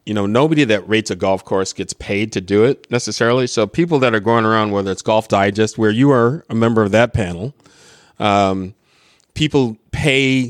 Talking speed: 200 wpm